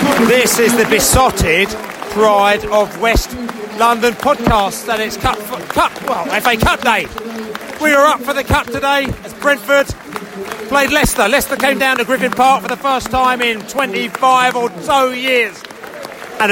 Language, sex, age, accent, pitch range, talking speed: English, male, 30-49, British, 220-255 Hz, 165 wpm